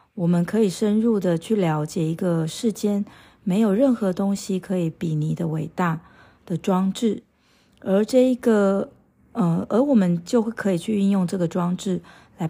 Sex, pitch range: female, 170-215 Hz